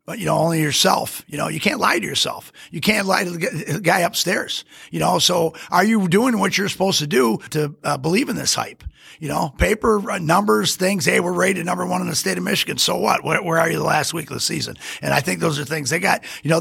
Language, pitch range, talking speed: English, 155-190 Hz, 265 wpm